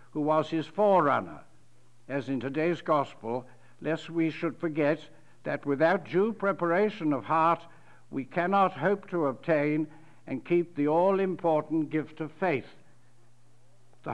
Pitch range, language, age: 140-175 Hz, English, 60-79